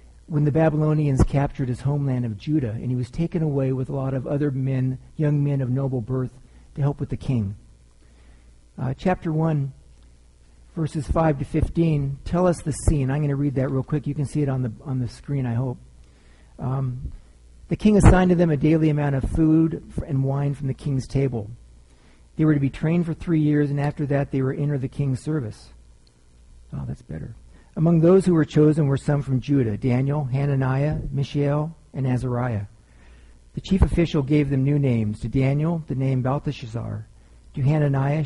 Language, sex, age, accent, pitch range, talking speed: English, male, 50-69, American, 115-145 Hz, 195 wpm